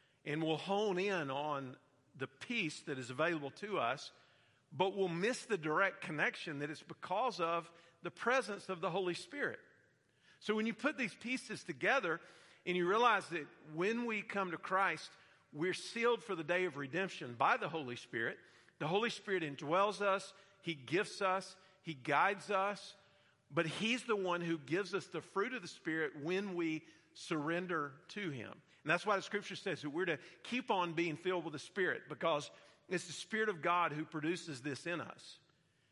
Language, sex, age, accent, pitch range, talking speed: English, male, 50-69, American, 155-200 Hz, 185 wpm